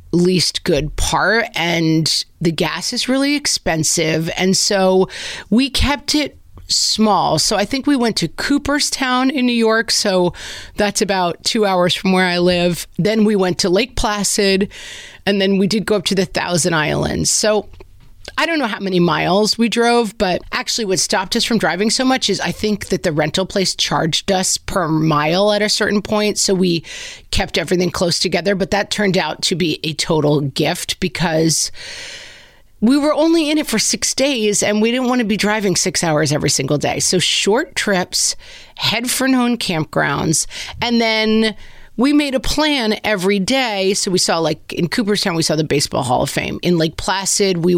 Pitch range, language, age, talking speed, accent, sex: 170-220 Hz, English, 30-49, 190 wpm, American, female